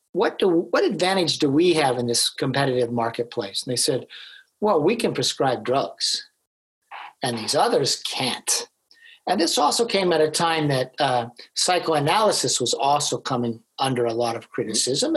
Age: 50-69